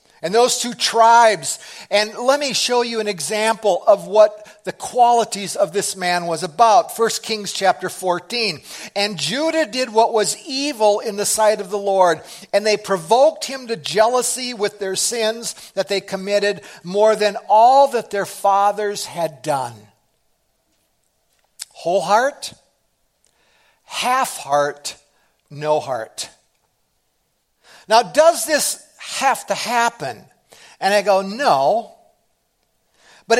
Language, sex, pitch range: English, male, 190-240 Hz